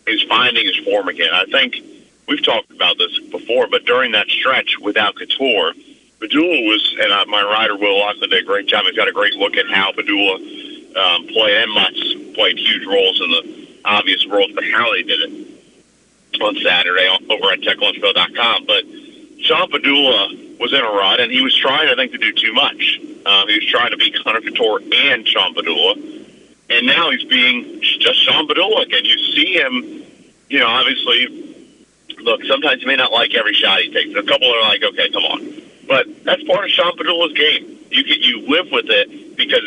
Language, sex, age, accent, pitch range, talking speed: English, male, 50-69, American, 290-475 Hz, 200 wpm